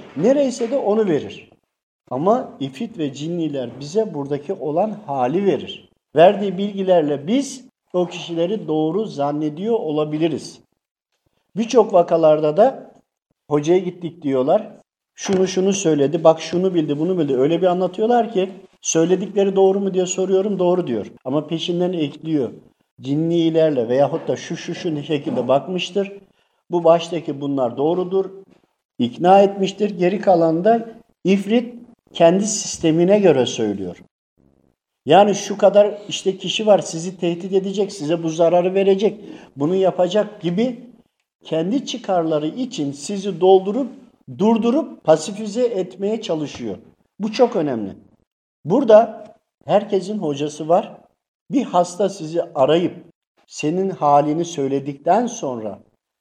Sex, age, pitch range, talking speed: male, 50-69, 155-205 Hz, 115 wpm